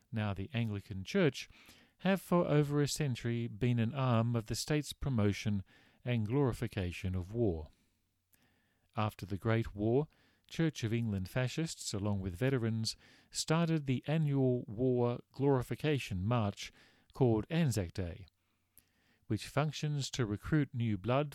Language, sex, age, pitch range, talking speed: English, male, 40-59, 100-130 Hz, 130 wpm